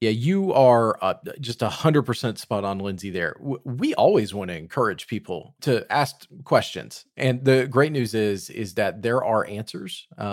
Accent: American